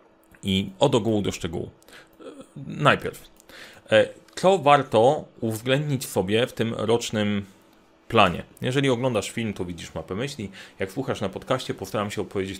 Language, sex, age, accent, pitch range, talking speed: Polish, male, 30-49, native, 100-140 Hz, 135 wpm